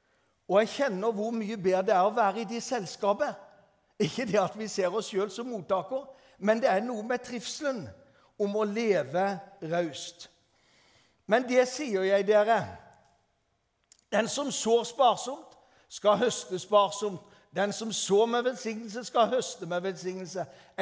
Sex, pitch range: male, 185-235 Hz